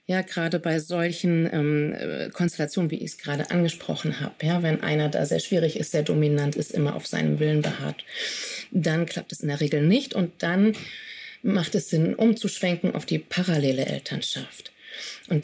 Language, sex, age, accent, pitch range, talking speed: German, female, 30-49, German, 150-190 Hz, 175 wpm